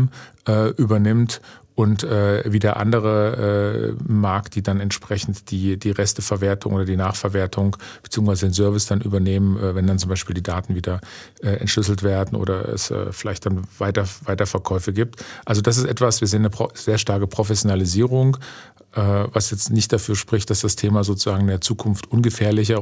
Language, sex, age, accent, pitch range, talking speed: German, male, 40-59, German, 100-110 Hz, 160 wpm